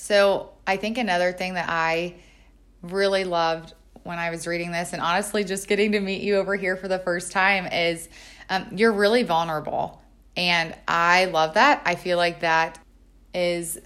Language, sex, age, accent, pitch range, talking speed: English, female, 20-39, American, 165-200 Hz, 180 wpm